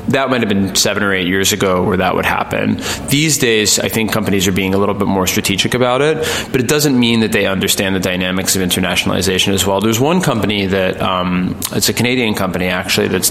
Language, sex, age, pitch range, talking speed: English, male, 20-39, 95-105 Hz, 230 wpm